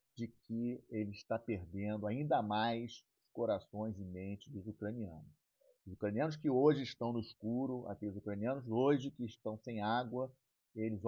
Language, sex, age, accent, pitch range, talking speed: Portuguese, male, 40-59, Brazilian, 105-125 Hz, 145 wpm